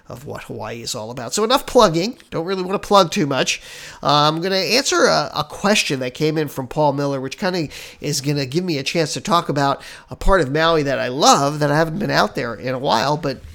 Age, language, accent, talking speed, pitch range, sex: 40-59, English, American, 265 wpm, 140-190 Hz, male